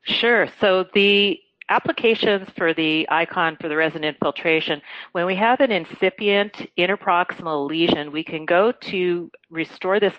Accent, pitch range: American, 145-180 Hz